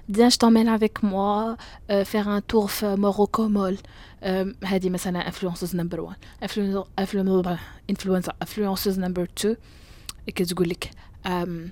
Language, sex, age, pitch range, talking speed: Arabic, female, 20-39, 175-205 Hz, 150 wpm